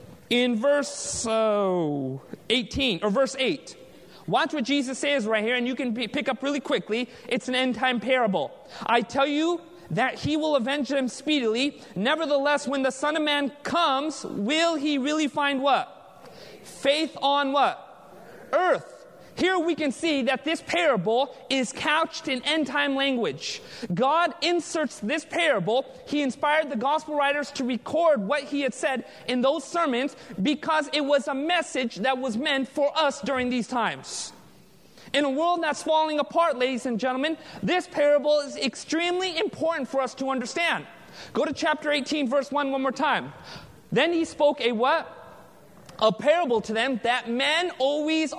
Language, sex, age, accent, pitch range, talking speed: English, male, 30-49, American, 255-305 Hz, 160 wpm